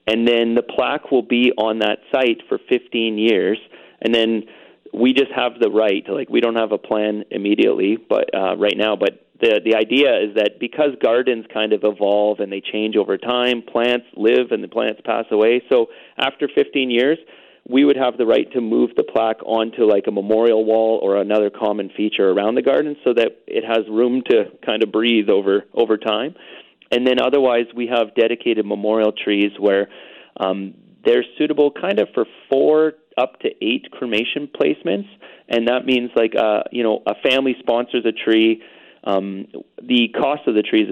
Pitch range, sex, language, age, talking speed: 105-125 Hz, male, English, 30-49, 190 wpm